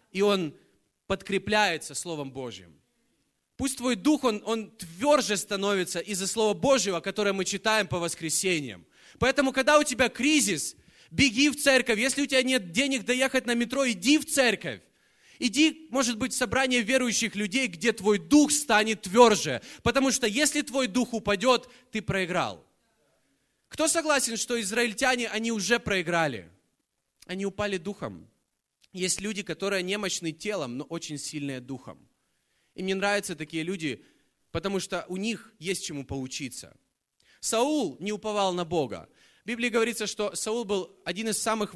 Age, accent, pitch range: 20-39, native, 180-250 Hz